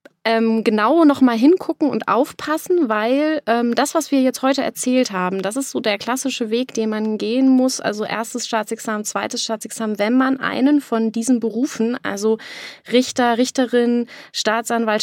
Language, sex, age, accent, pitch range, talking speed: German, female, 20-39, German, 205-245 Hz, 155 wpm